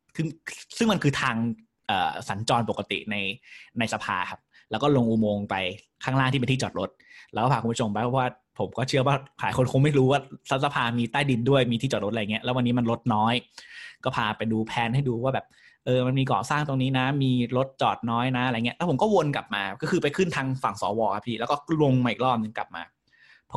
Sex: male